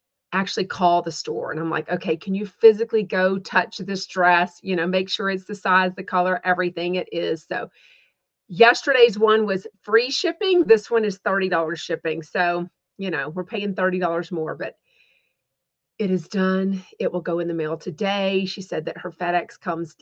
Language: English